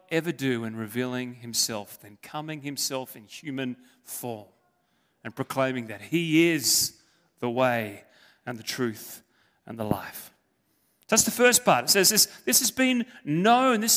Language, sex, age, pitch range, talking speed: English, male, 30-49, 145-215 Hz, 155 wpm